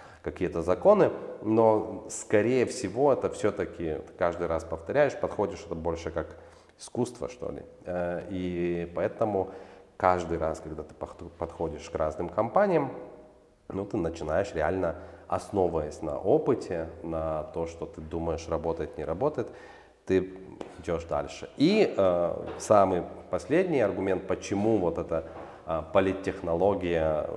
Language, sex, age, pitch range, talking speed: Russian, male, 30-49, 80-95 Hz, 115 wpm